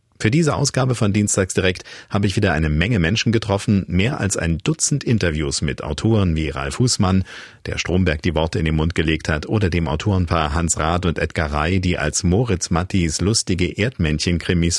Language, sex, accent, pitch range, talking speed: German, male, German, 80-100 Hz, 185 wpm